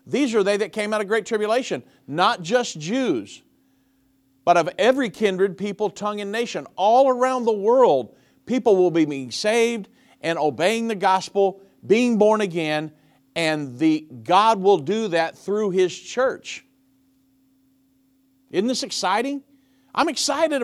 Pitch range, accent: 175-265 Hz, American